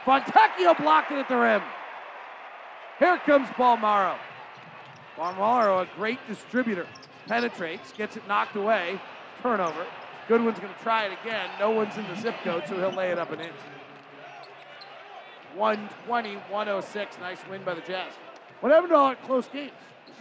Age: 40-59